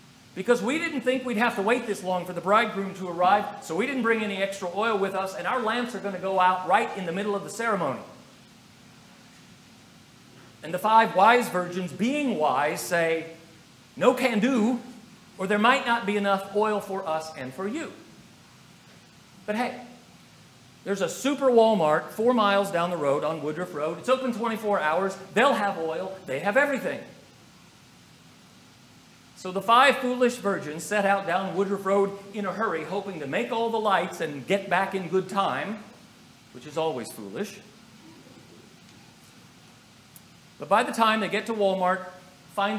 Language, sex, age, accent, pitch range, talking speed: English, male, 40-59, American, 180-230 Hz, 170 wpm